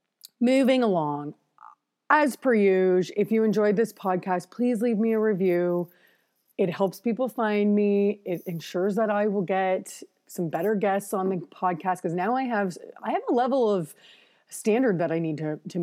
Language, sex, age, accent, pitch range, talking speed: English, female, 30-49, American, 180-220 Hz, 180 wpm